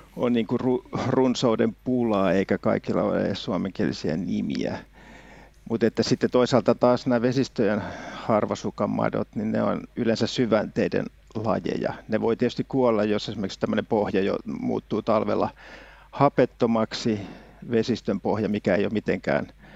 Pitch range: 110-125 Hz